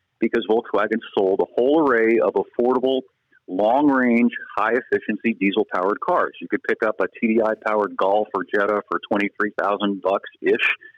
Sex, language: male, English